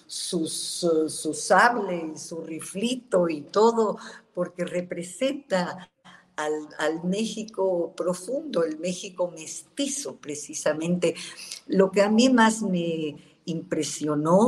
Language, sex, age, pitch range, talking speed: Spanish, female, 50-69, 150-180 Hz, 110 wpm